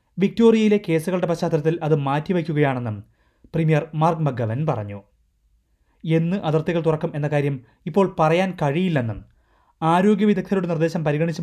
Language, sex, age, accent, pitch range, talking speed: Malayalam, male, 30-49, native, 115-175 Hz, 110 wpm